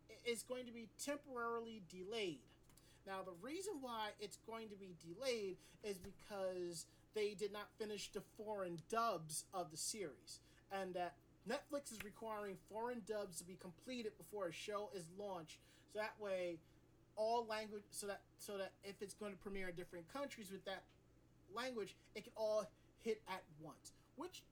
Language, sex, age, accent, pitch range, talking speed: English, male, 30-49, American, 180-220 Hz, 165 wpm